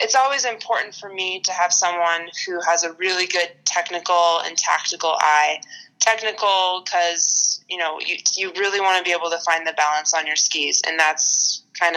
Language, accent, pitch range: English, American, 165-190 Hz